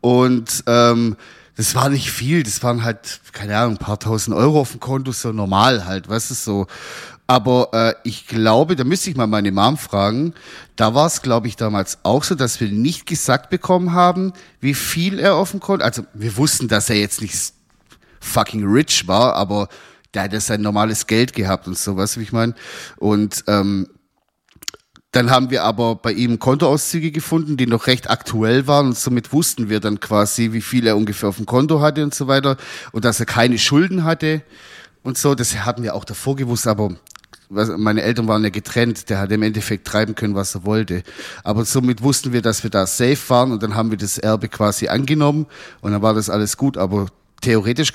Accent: German